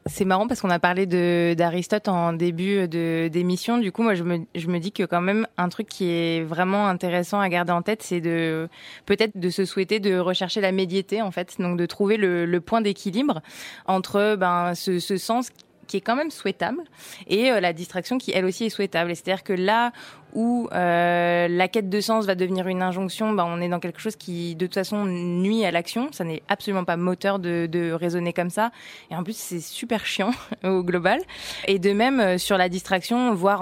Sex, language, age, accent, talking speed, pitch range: female, French, 20-39, French, 220 wpm, 175-210 Hz